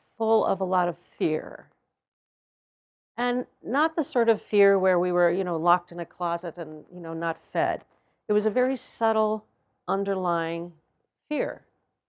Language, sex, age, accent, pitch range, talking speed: English, female, 50-69, American, 170-200 Hz, 165 wpm